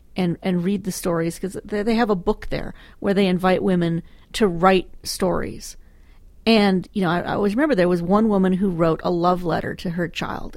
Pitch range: 165-210 Hz